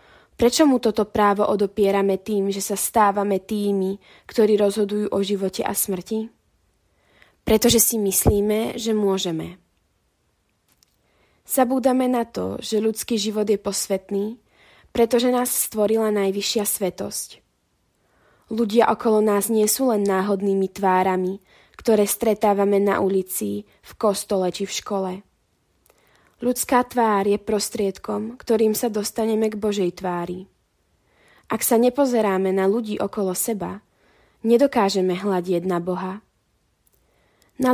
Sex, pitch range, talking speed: female, 195-230 Hz, 115 wpm